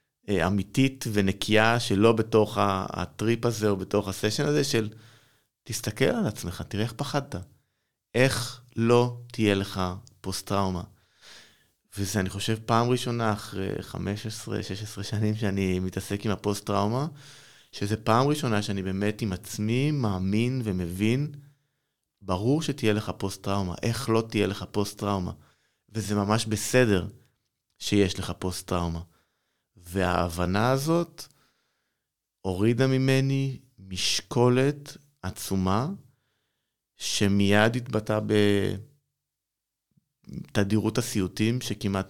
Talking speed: 105 wpm